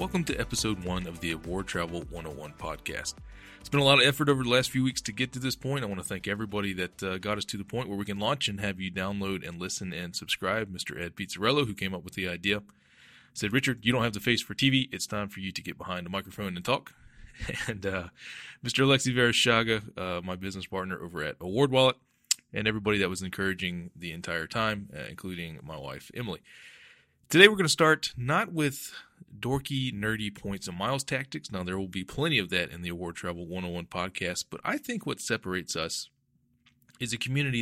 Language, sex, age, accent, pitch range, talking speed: English, male, 20-39, American, 95-125 Hz, 225 wpm